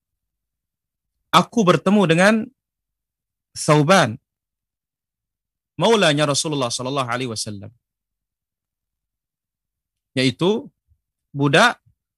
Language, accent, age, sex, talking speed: Indonesian, native, 40-59, male, 55 wpm